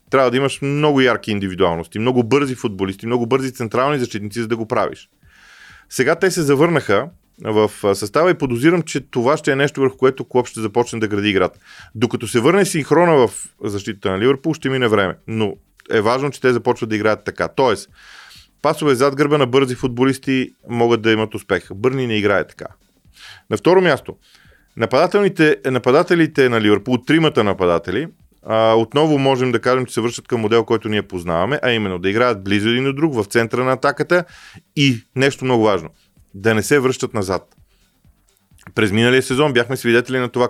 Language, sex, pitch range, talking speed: Bulgarian, male, 110-135 Hz, 180 wpm